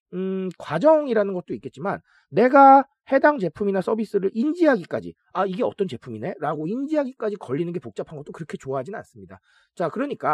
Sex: male